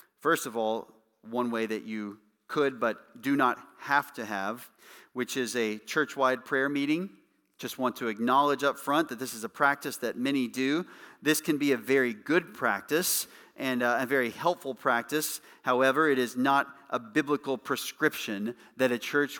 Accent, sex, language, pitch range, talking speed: American, male, English, 120-155 Hz, 175 wpm